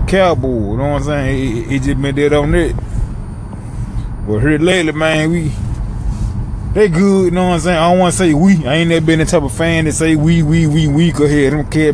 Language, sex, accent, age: English, male, American, 20-39